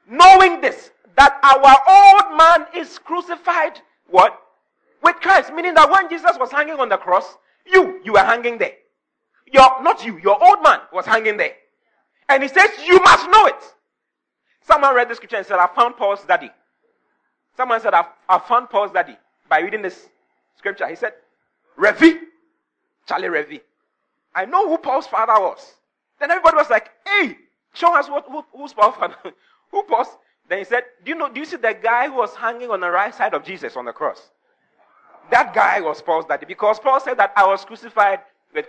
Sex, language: male, English